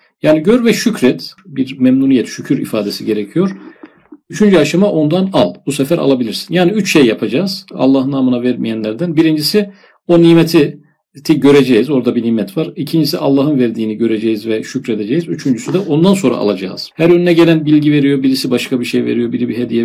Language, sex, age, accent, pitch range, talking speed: Turkish, male, 40-59, native, 130-170 Hz, 165 wpm